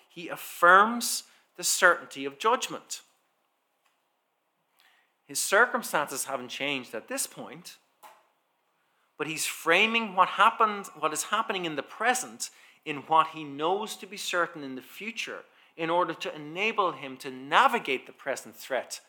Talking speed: 135 wpm